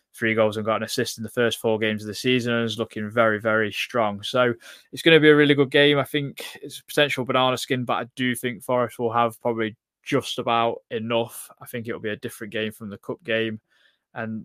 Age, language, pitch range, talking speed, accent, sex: 20-39, English, 110-125 Hz, 245 wpm, British, male